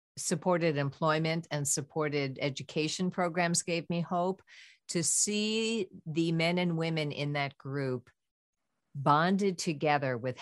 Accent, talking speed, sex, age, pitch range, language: American, 120 wpm, female, 50-69, 130-160 Hz, English